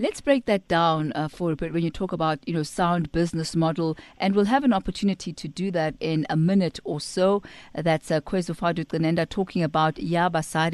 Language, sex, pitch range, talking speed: English, female, 160-205 Hz, 210 wpm